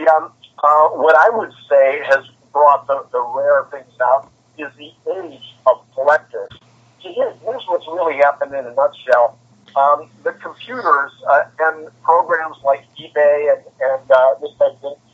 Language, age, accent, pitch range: English, 50-69, American, 135-185 Hz